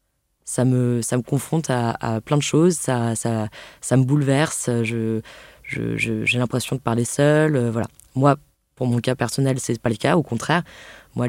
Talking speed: 200 wpm